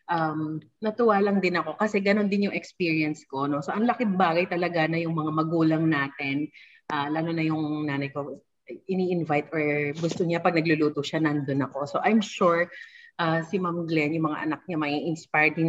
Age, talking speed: 30-49, 195 wpm